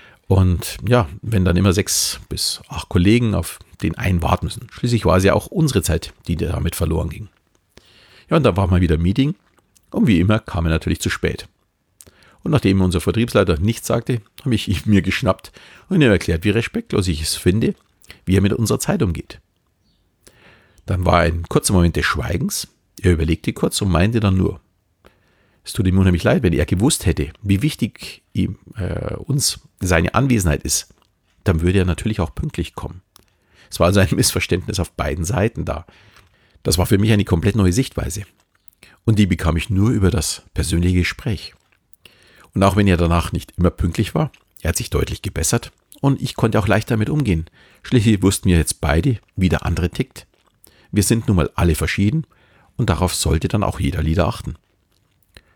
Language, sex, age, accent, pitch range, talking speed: German, male, 50-69, German, 85-110 Hz, 185 wpm